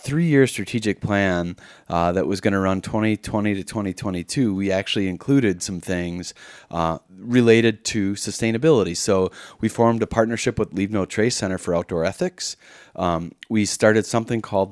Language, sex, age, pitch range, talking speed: English, male, 30-49, 95-115 Hz, 165 wpm